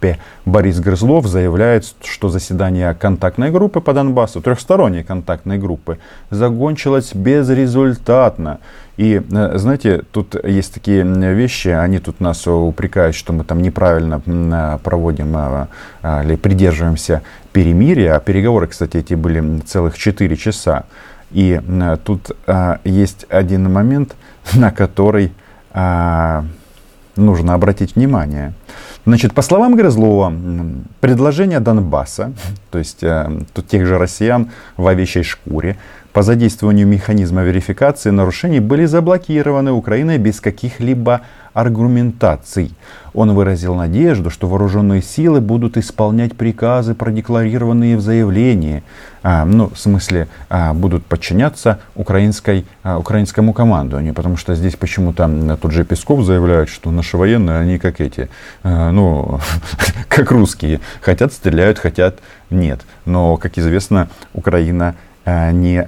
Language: Russian